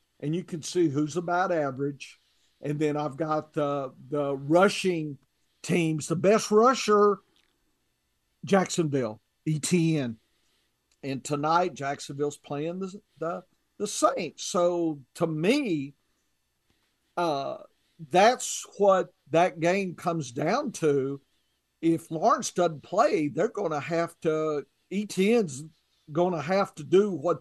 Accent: American